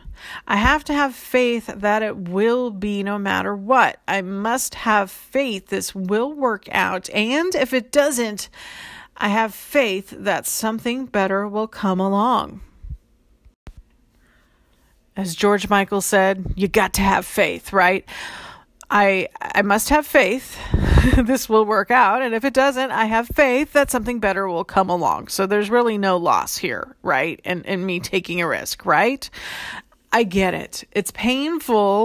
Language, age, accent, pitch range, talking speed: English, 40-59, American, 195-255 Hz, 160 wpm